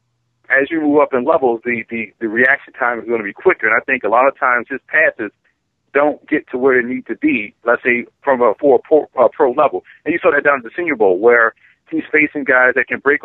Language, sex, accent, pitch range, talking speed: English, male, American, 120-150 Hz, 260 wpm